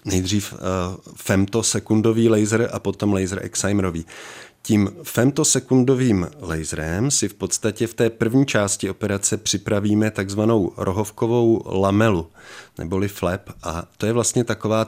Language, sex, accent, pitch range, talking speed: Czech, male, native, 100-115 Hz, 115 wpm